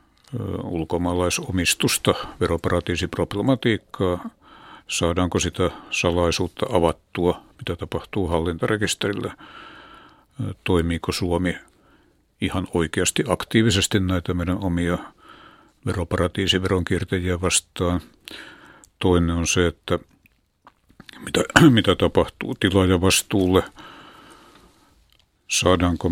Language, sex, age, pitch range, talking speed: Finnish, male, 60-79, 85-100 Hz, 65 wpm